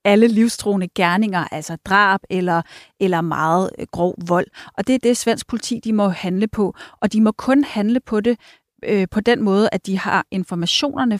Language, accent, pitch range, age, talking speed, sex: Danish, native, 180-220 Hz, 30-49, 195 wpm, female